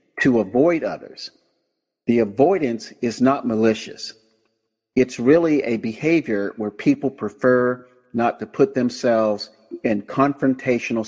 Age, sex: 50-69, male